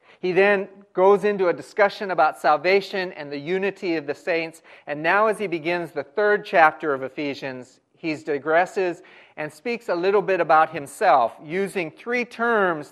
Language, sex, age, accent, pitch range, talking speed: English, male, 40-59, American, 145-190 Hz, 165 wpm